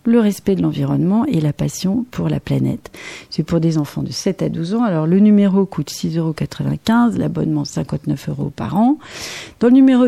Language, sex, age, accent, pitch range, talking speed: French, female, 40-59, French, 160-205 Hz, 195 wpm